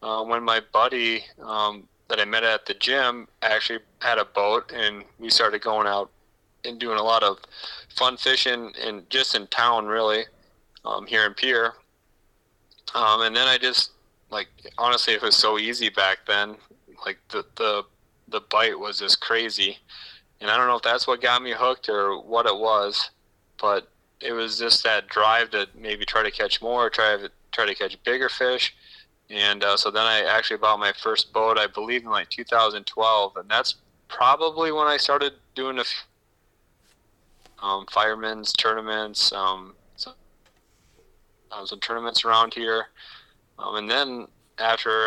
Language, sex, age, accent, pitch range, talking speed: English, male, 30-49, American, 105-115 Hz, 170 wpm